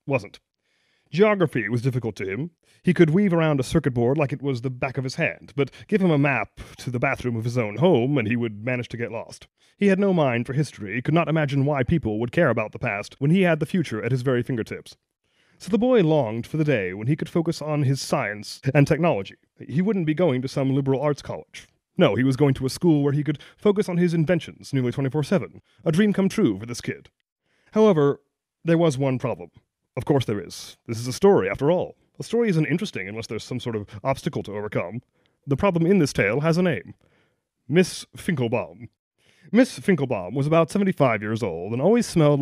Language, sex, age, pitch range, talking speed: English, male, 30-49, 125-170 Hz, 230 wpm